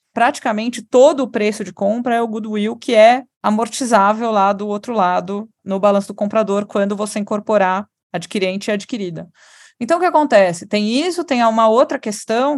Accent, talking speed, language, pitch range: Brazilian, 170 wpm, Portuguese, 200-265 Hz